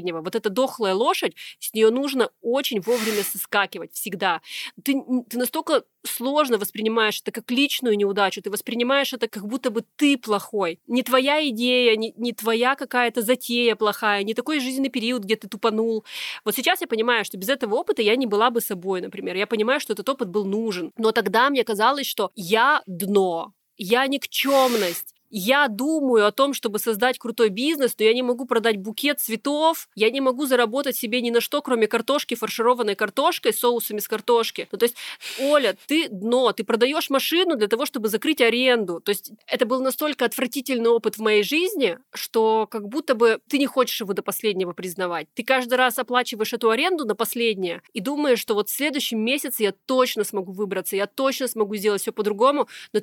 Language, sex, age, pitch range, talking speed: Russian, female, 30-49, 215-260 Hz, 185 wpm